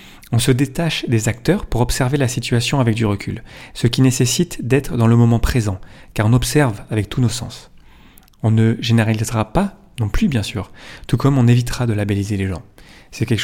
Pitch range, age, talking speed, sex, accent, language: 110-130 Hz, 30-49, 200 wpm, male, French, French